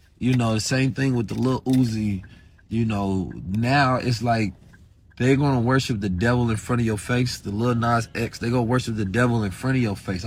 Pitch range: 110-145 Hz